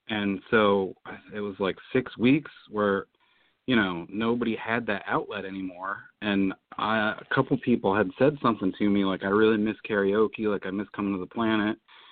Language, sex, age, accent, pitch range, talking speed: English, male, 40-59, American, 100-110 Hz, 190 wpm